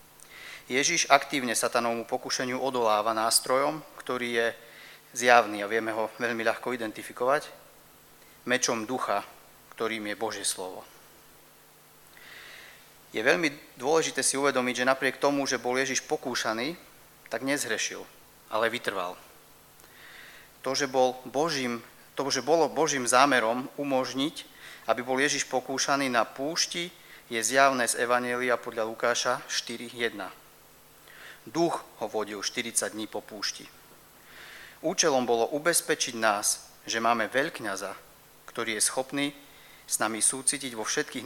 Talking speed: 120 wpm